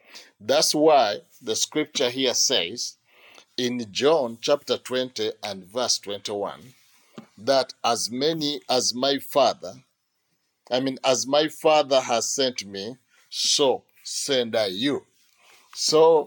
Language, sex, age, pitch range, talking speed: English, male, 50-69, 115-145 Hz, 120 wpm